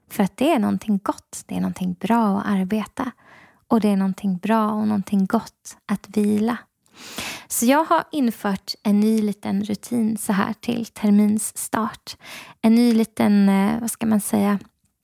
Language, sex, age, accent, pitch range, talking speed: Swedish, female, 20-39, native, 205-235 Hz, 165 wpm